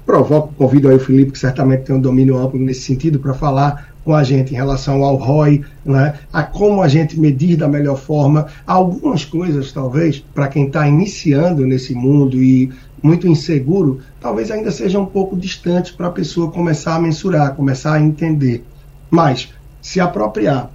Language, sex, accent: Portuguese, male, Brazilian